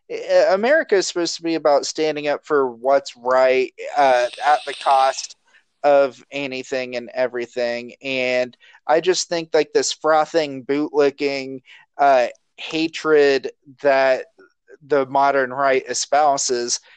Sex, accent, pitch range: male, American, 135-185 Hz